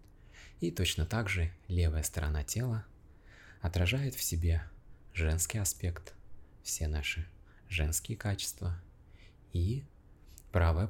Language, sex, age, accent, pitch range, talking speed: Russian, male, 30-49, native, 80-100 Hz, 100 wpm